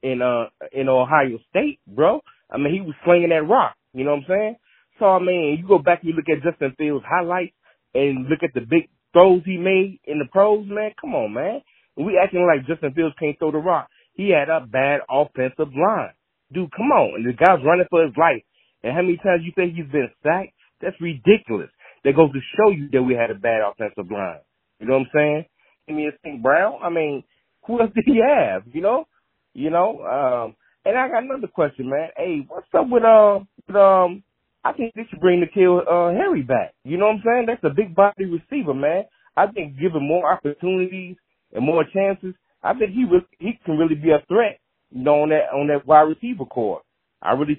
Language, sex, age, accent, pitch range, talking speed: English, male, 30-49, American, 145-195 Hz, 225 wpm